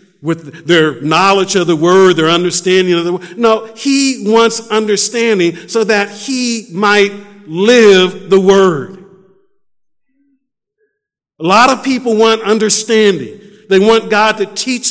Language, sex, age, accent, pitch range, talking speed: English, male, 50-69, American, 200-250 Hz, 135 wpm